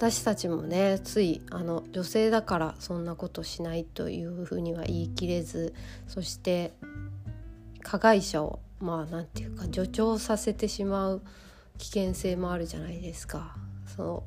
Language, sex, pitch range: Japanese, female, 160-195 Hz